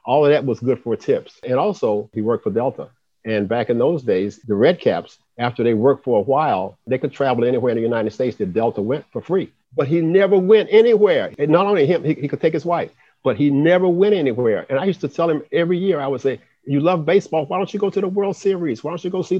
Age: 50-69